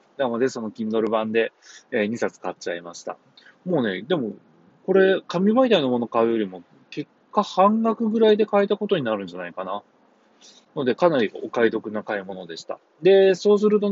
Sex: male